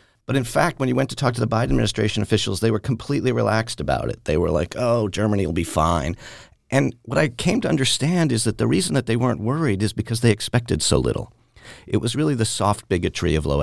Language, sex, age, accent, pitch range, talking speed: English, male, 40-59, American, 90-125 Hz, 240 wpm